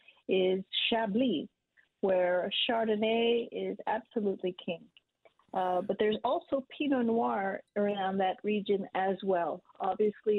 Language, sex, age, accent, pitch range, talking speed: English, female, 40-59, American, 190-230 Hz, 110 wpm